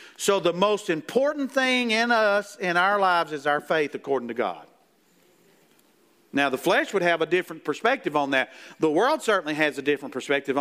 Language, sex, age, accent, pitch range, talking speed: English, male, 50-69, American, 145-210 Hz, 185 wpm